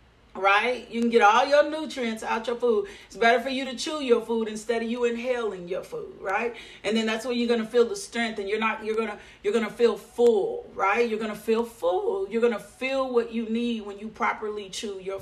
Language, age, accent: English, 40-59, American